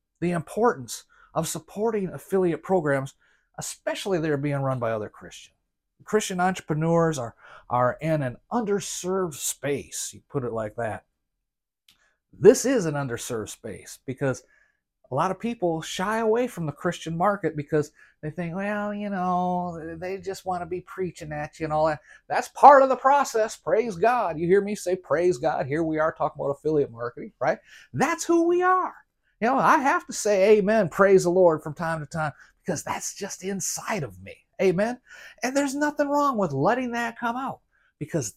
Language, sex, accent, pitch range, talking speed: English, male, American, 155-210 Hz, 180 wpm